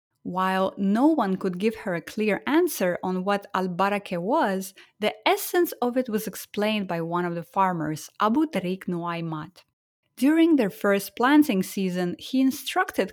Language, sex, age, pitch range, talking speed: English, female, 20-39, 180-265 Hz, 155 wpm